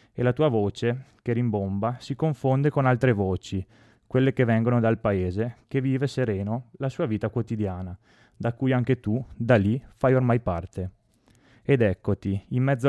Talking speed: 170 wpm